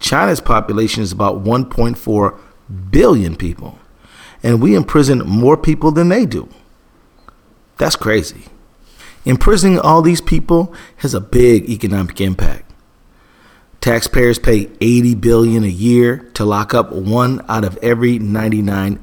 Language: English